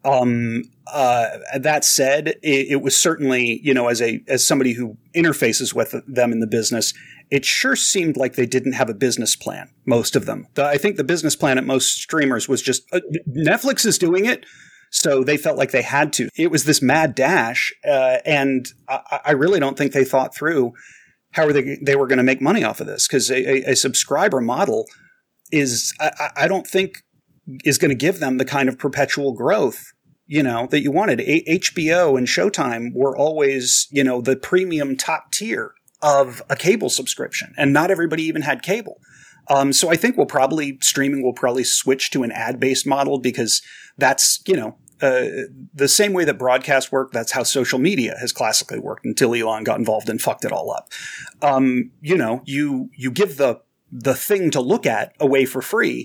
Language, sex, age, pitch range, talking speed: English, male, 30-49, 130-160 Hz, 200 wpm